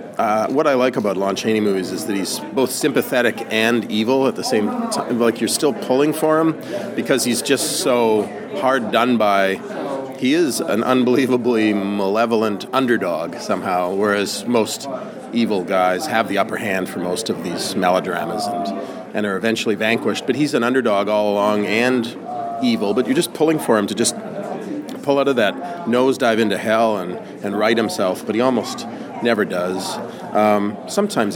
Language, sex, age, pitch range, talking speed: English, male, 40-59, 100-130 Hz, 175 wpm